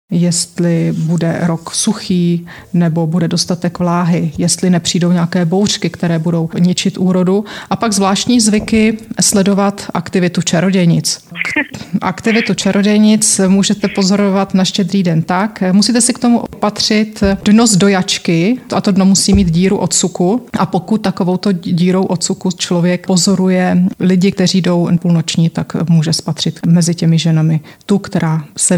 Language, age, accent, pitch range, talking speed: Czech, 30-49, native, 170-195 Hz, 140 wpm